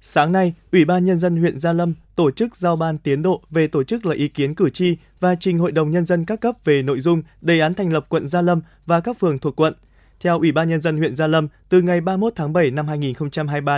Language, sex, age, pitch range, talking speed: Vietnamese, male, 20-39, 150-185 Hz, 265 wpm